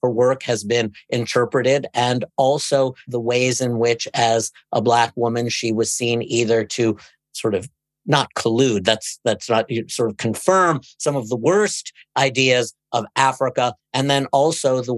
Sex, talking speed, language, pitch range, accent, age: male, 160 wpm, English, 105-125 Hz, American, 50-69